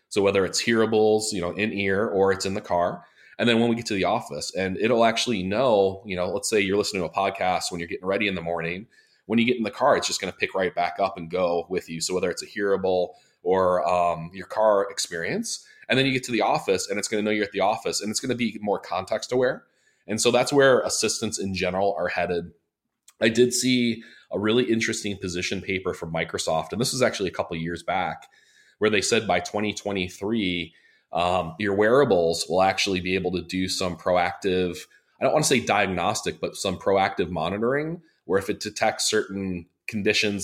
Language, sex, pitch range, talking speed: English, male, 90-110 Hz, 225 wpm